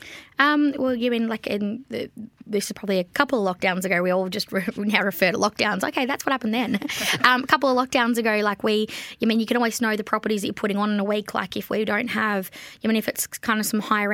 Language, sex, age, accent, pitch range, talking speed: English, female, 20-39, Australian, 195-225 Hz, 275 wpm